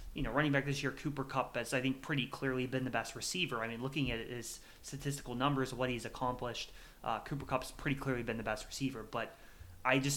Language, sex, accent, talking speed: English, male, American, 230 wpm